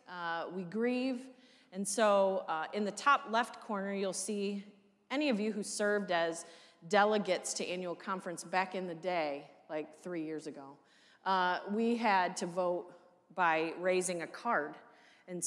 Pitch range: 170-215 Hz